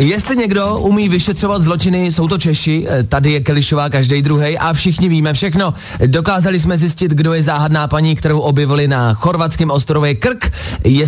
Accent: native